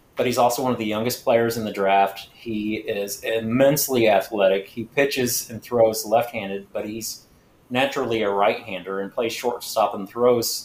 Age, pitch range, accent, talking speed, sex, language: 30-49, 105-120 Hz, American, 170 wpm, male, English